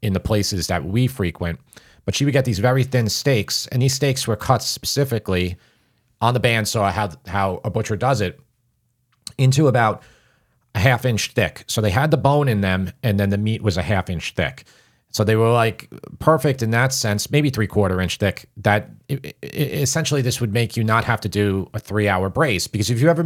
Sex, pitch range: male, 95-125 Hz